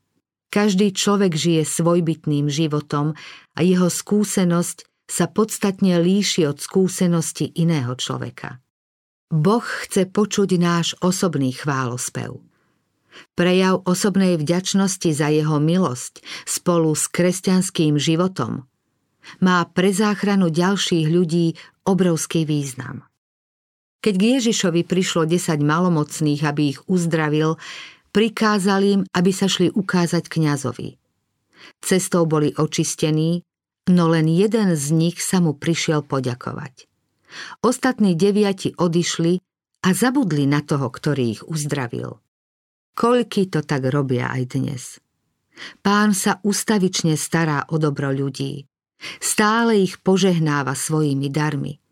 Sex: female